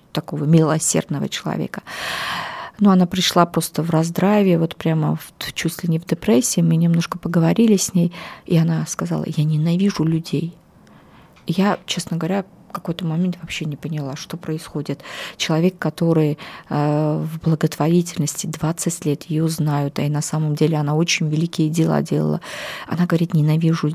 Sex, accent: female, native